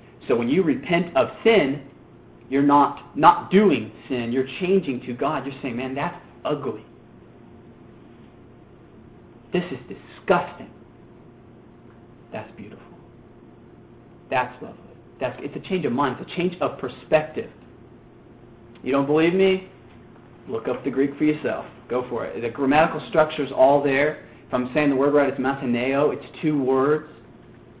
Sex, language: male, English